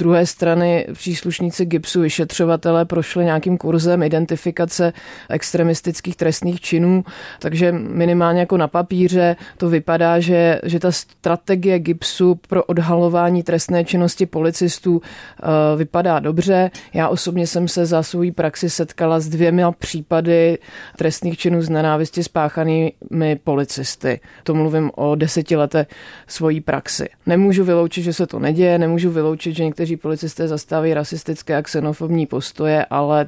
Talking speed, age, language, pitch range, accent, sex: 130 wpm, 30-49, Czech, 150-170 Hz, native, female